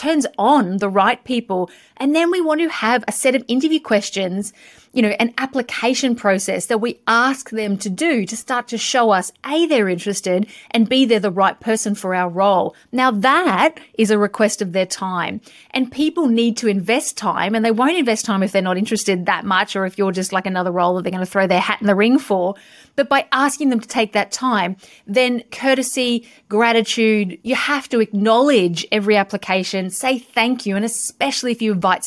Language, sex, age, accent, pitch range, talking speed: English, female, 30-49, Australian, 200-255 Hz, 210 wpm